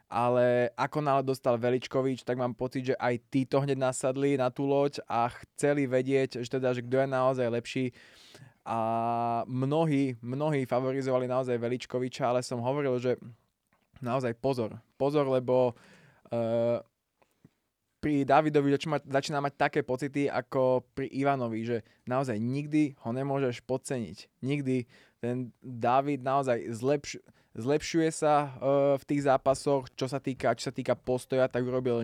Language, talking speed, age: Slovak, 140 wpm, 20-39